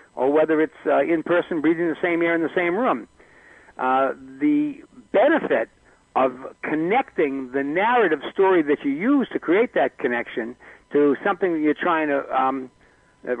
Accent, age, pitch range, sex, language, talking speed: American, 60-79, 150-200 Hz, male, English, 165 wpm